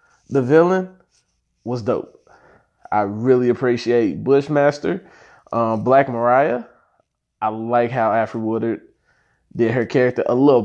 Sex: male